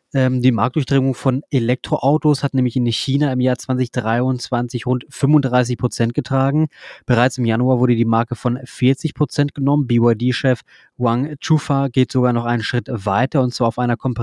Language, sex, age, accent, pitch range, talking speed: German, male, 20-39, German, 120-135 Hz, 155 wpm